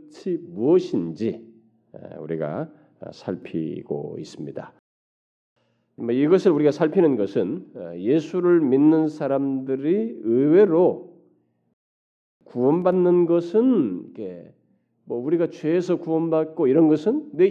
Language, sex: Korean, male